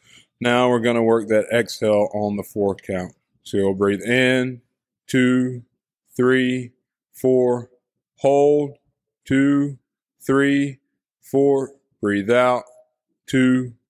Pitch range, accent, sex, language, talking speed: 120-140 Hz, American, male, English, 105 wpm